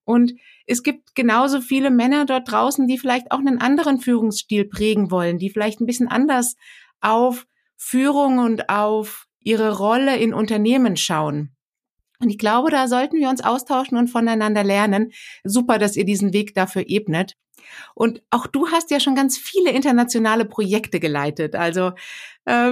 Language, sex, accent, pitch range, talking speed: German, female, German, 210-250 Hz, 160 wpm